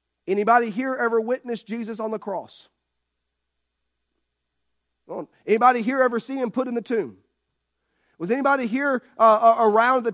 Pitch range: 160-230 Hz